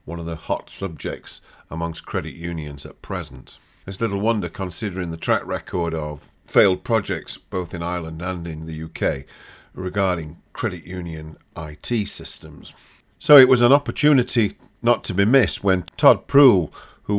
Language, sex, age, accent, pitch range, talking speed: English, male, 50-69, British, 80-100 Hz, 155 wpm